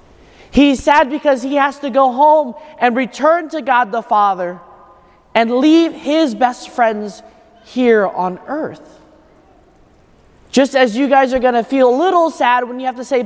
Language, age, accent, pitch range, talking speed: English, 30-49, American, 220-300 Hz, 170 wpm